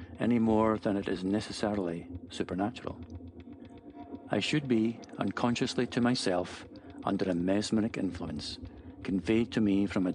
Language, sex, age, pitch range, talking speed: English, male, 50-69, 95-115 Hz, 130 wpm